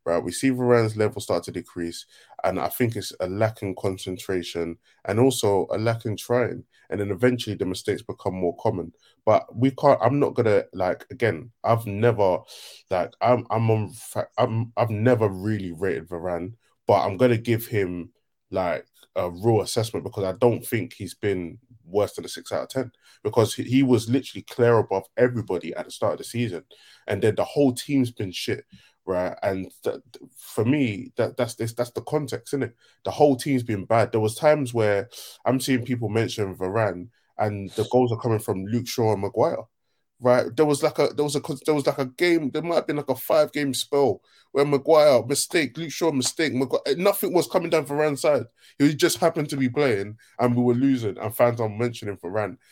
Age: 20-39